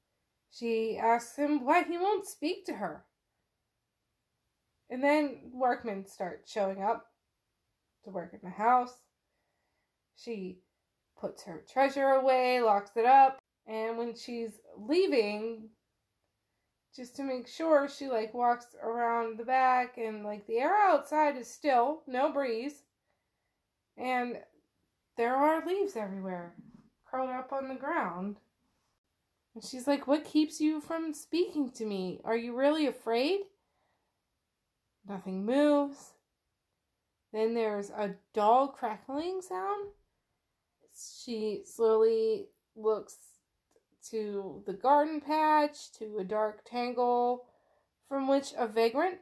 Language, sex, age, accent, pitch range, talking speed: English, female, 20-39, American, 215-290 Hz, 120 wpm